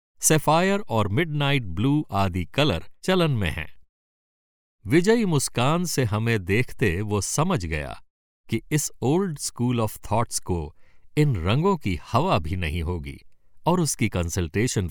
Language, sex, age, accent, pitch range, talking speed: Hindi, male, 60-79, native, 90-150 Hz, 140 wpm